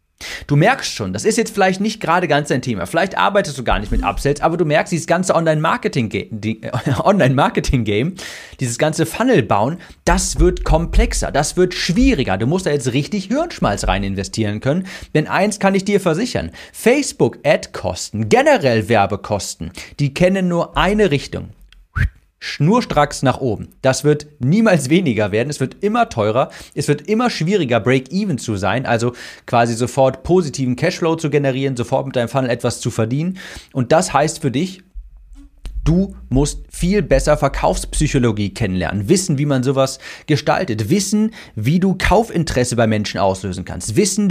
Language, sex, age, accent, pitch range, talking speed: German, male, 40-59, German, 120-180 Hz, 155 wpm